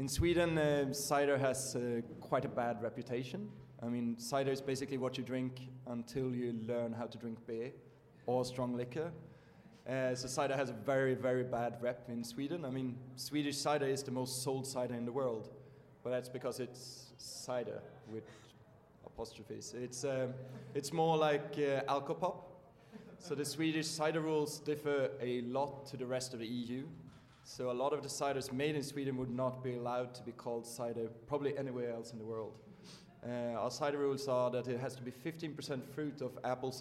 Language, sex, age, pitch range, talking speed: English, male, 20-39, 125-145 Hz, 185 wpm